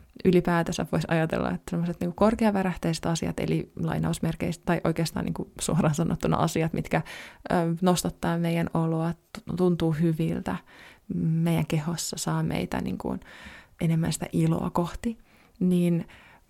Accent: native